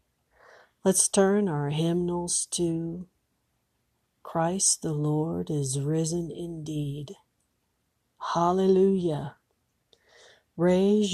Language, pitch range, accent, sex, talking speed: English, 150-185 Hz, American, female, 70 wpm